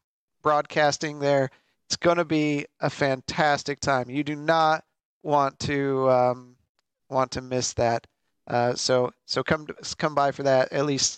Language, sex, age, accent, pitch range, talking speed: English, male, 40-59, American, 130-160 Hz, 155 wpm